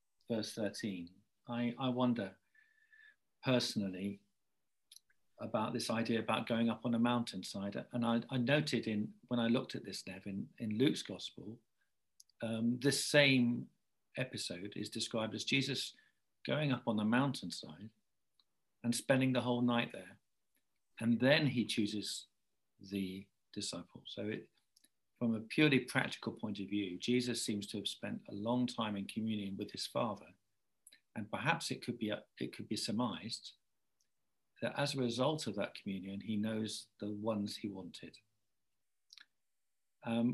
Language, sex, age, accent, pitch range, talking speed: English, male, 50-69, British, 105-130 Hz, 145 wpm